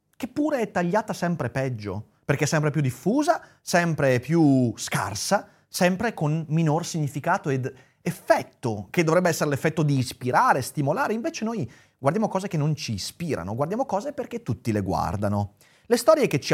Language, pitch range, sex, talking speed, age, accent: Italian, 120-185 Hz, male, 165 wpm, 30-49, native